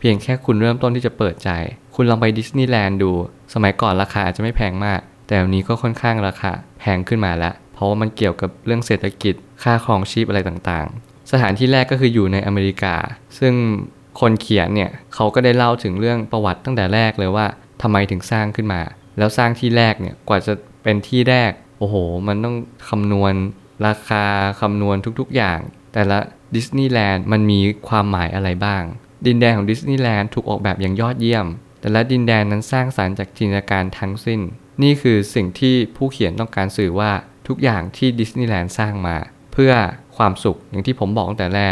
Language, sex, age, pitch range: Thai, male, 20-39, 100-120 Hz